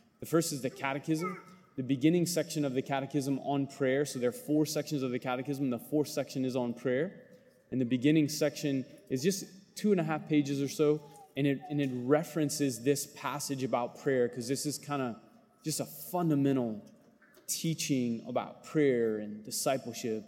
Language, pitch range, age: English, 125-150 Hz, 20-39